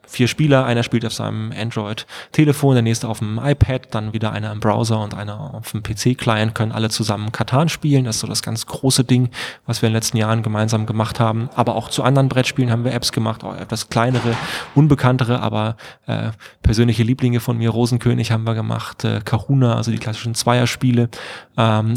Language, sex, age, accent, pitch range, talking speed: German, male, 20-39, German, 110-125 Hz, 200 wpm